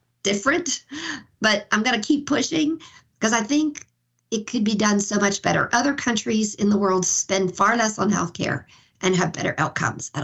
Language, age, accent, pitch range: English, 50-69, American, 190-245 Hz